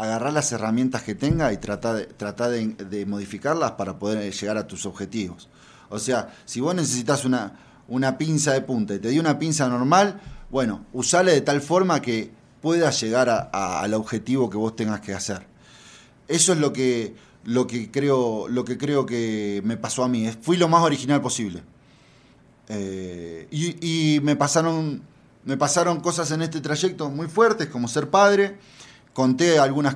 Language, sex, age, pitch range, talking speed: English, male, 20-39, 110-145 Hz, 175 wpm